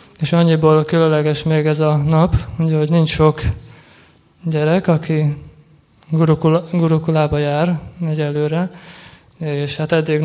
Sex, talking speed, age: male, 110 wpm, 20-39